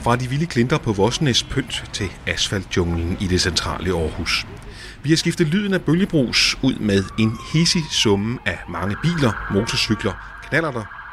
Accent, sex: native, male